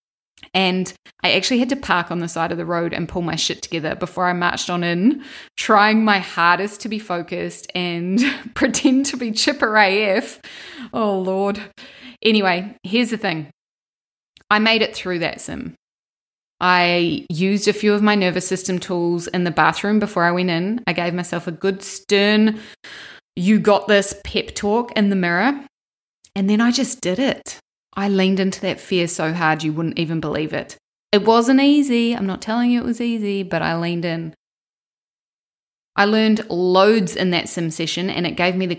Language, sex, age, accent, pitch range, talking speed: English, female, 20-39, Australian, 170-215 Hz, 185 wpm